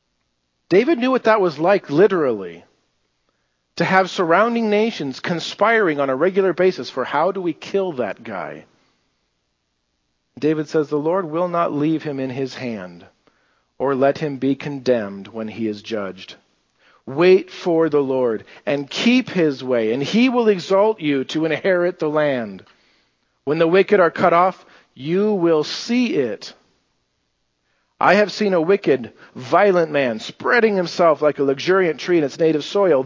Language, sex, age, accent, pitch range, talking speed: English, male, 50-69, American, 130-190 Hz, 160 wpm